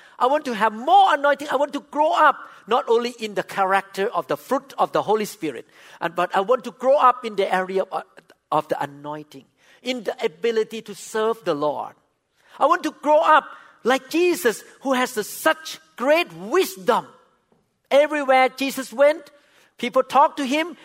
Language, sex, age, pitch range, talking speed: English, male, 50-69, 210-300 Hz, 175 wpm